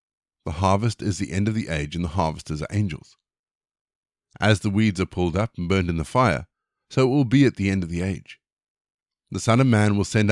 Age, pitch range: 50-69, 90-115 Hz